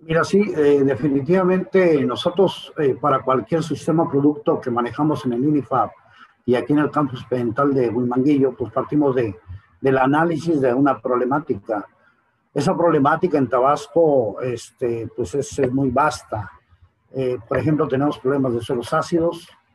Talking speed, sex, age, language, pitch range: 150 wpm, male, 50-69, Spanish, 125-155 Hz